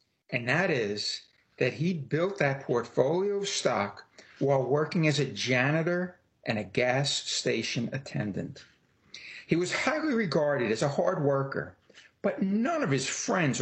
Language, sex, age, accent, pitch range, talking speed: English, male, 60-79, American, 130-180 Hz, 145 wpm